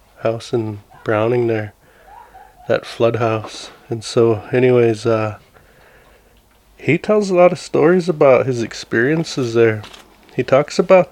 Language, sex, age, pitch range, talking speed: English, male, 20-39, 110-125 Hz, 130 wpm